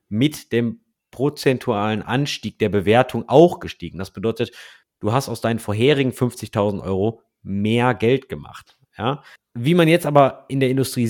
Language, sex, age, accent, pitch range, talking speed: German, male, 30-49, German, 115-150 Hz, 145 wpm